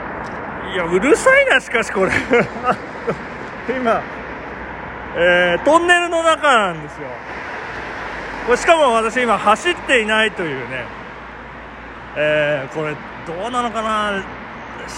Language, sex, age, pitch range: Japanese, male, 40-59, 150-225 Hz